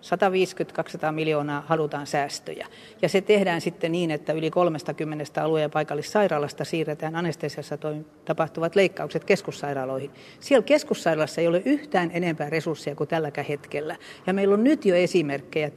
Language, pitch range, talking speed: Finnish, 150-195 Hz, 135 wpm